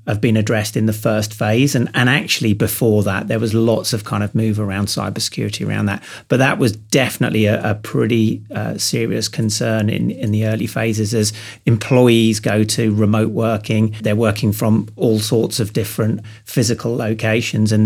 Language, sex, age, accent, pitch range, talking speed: English, male, 40-59, British, 110-125 Hz, 180 wpm